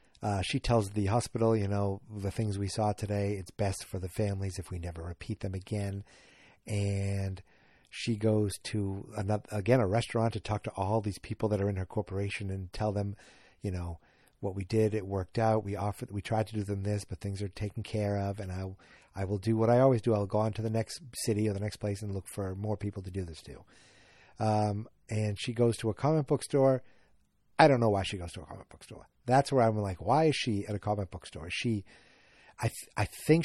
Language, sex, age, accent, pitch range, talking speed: English, male, 50-69, American, 100-120 Hz, 240 wpm